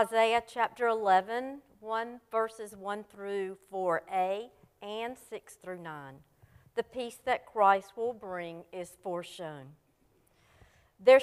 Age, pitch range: 50-69, 180-240 Hz